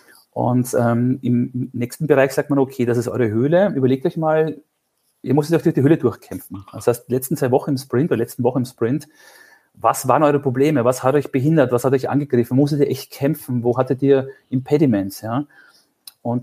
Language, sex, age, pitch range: German, male, 40-59, 125-150 Hz